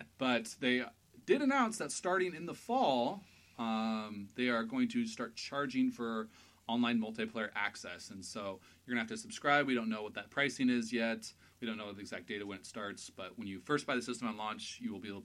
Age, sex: 30-49, male